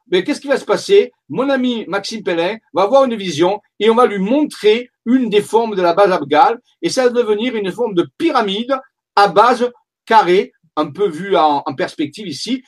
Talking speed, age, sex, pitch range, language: 210 wpm, 50-69, male, 165-235 Hz, French